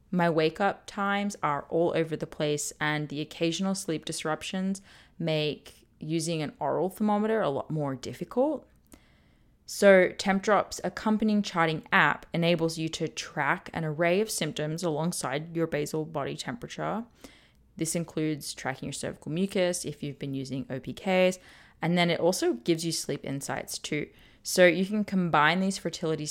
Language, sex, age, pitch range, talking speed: English, female, 20-39, 150-185 Hz, 150 wpm